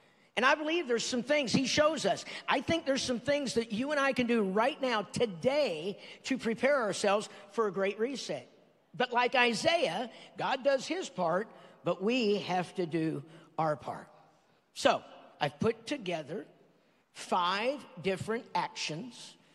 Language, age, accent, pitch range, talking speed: English, 50-69, American, 190-250 Hz, 155 wpm